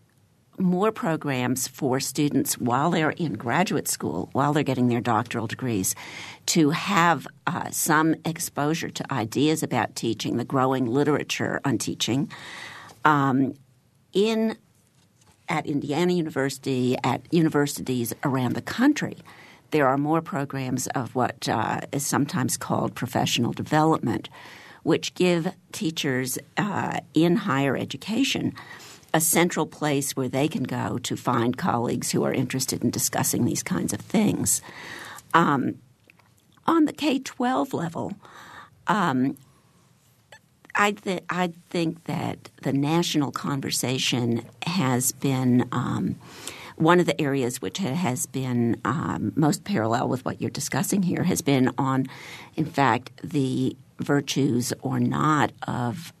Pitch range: 130-165 Hz